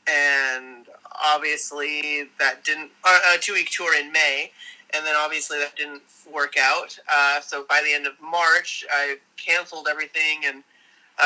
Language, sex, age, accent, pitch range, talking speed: English, male, 30-49, American, 145-170 Hz, 155 wpm